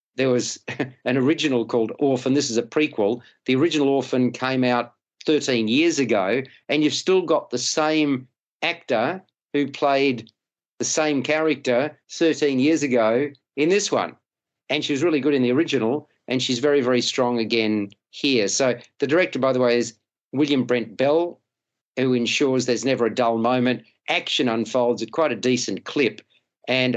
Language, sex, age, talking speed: English, male, 50-69, 165 wpm